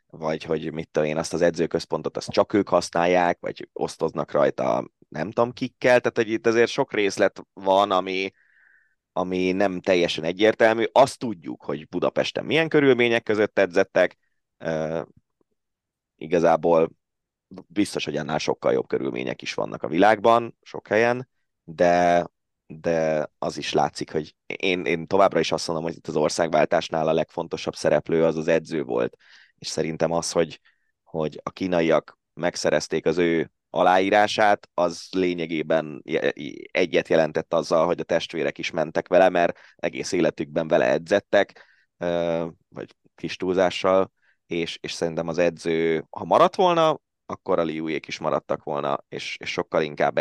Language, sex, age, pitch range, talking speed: Hungarian, male, 20-39, 80-105 Hz, 145 wpm